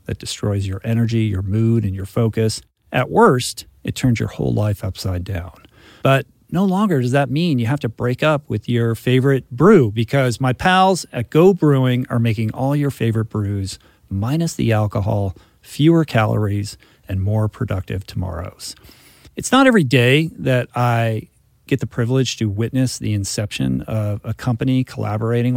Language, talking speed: English, 165 wpm